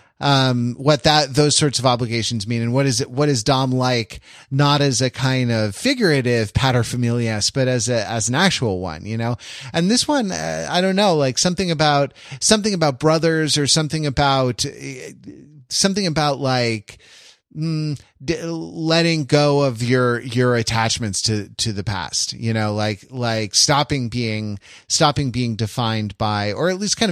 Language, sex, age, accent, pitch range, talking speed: English, male, 30-49, American, 115-150 Hz, 170 wpm